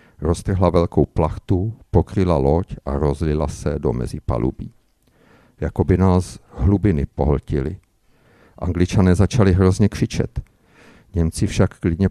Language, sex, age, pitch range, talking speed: Czech, male, 50-69, 85-110 Hz, 110 wpm